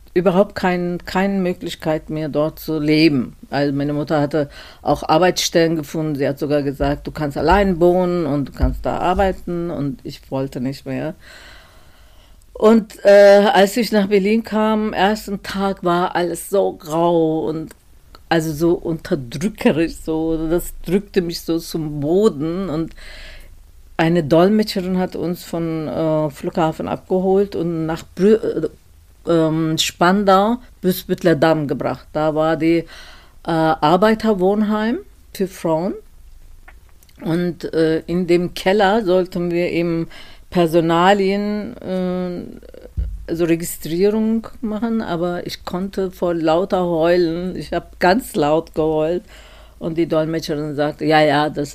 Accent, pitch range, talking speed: German, 155-190 Hz, 130 wpm